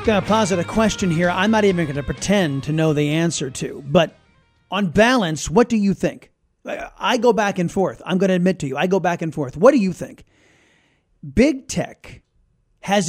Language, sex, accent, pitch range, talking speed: English, male, American, 165-215 Hz, 220 wpm